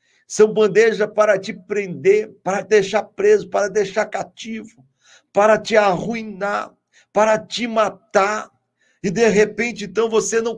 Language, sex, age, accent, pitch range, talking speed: Portuguese, male, 50-69, Brazilian, 175-215 Hz, 140 wpm